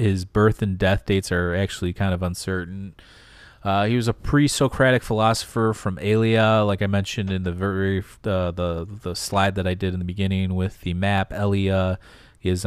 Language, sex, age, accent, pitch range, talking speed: English, male, 30-49, American, 90-105 Hz, 185 wpm